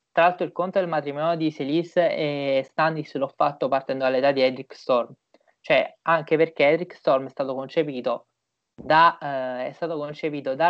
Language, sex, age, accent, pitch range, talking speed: Italian, male, 20-39, native, 140-165 Hz, 175 wpm